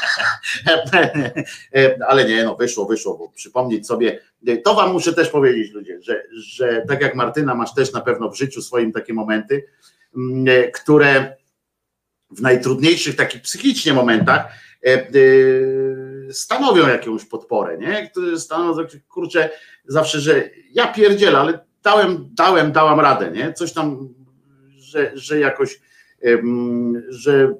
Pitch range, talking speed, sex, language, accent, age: 120-190 Hz, 115 wpm, male, Polish, native, 50-69